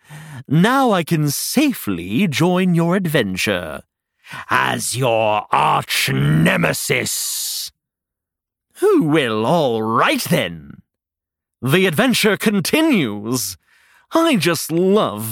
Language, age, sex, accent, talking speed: English, 40-59, male, British, 80 wpm